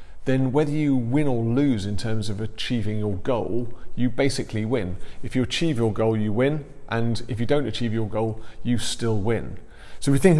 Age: 40-59